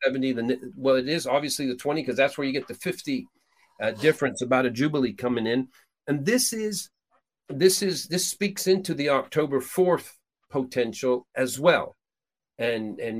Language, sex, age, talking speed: English, male, 50-69, 175 wpm